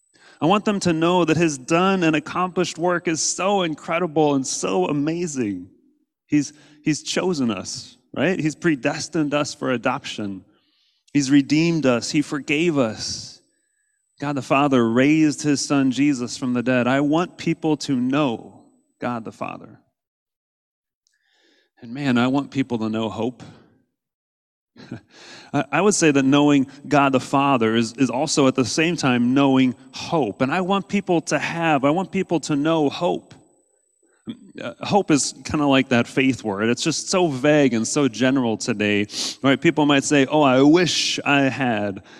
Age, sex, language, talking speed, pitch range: 30-49, male, English, 160 wpm, 130-175 Hz